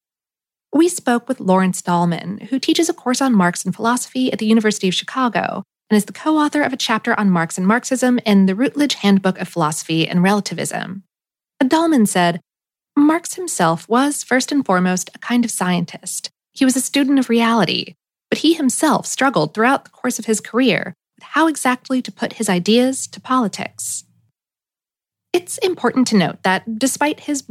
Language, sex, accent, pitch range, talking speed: English, female, American, 185-255 Hz, 175 wpm